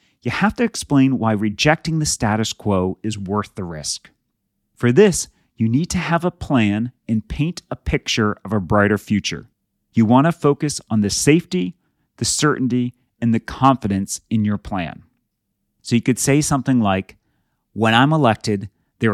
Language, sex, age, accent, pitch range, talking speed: English, male, 30-49, American, 100-130 Hz, 170 wpm